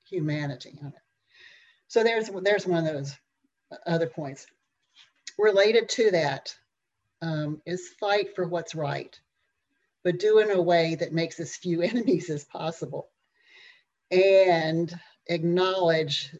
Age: 50-69